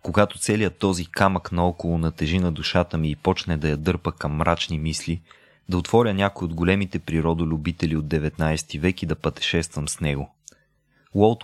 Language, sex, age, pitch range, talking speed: Bulgarian, male, 30-49, 80-100 Hz, 170 wpm